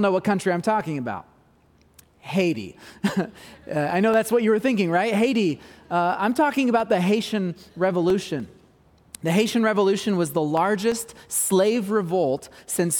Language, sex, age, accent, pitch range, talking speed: English, male, 30-49, American, 165-210 Hz, 150 wpm